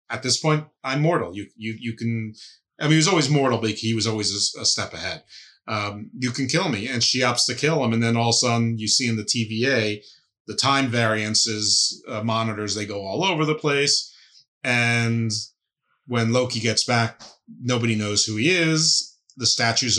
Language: English